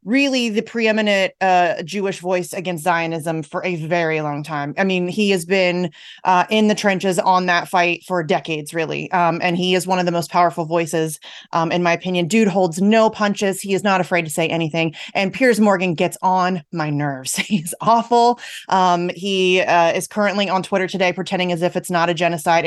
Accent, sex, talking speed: American, female, 205 wpm